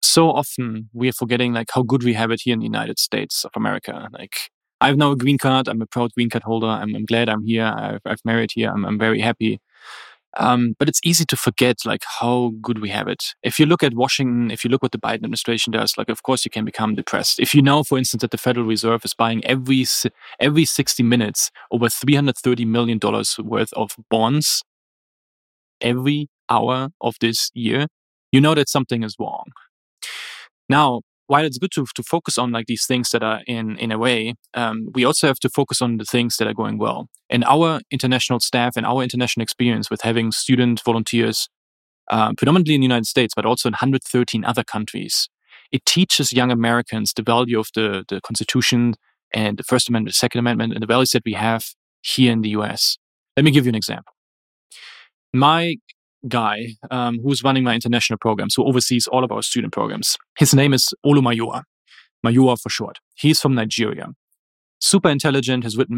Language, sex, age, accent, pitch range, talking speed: English, male, 20-39, German, 115-130 Hz, 205 wpm